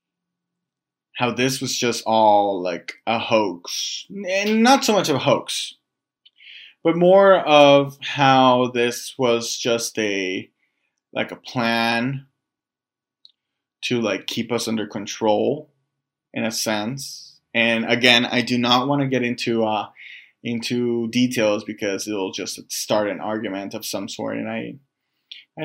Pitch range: 115-140 Hz